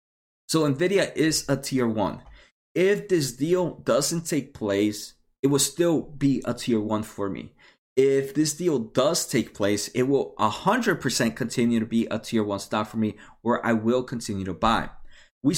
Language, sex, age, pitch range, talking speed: English, male, 20-39, 110-145 Hz, 185 wpm